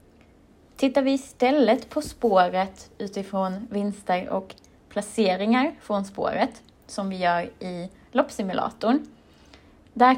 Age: 20-39